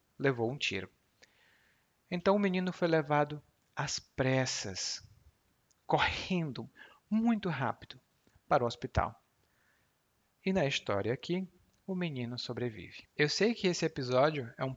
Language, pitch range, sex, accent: Portuguese, 115-150 Hz, male, Brazilian